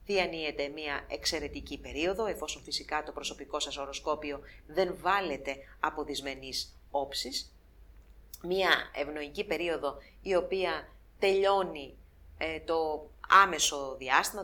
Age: 30-49